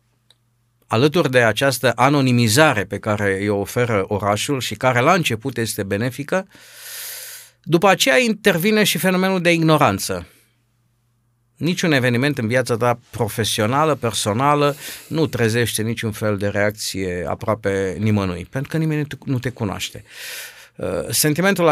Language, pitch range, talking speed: Romanian, 105-135 Hz, 120 wpm